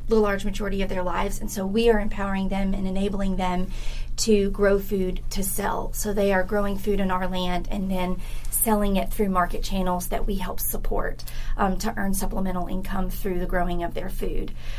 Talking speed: 200 wpm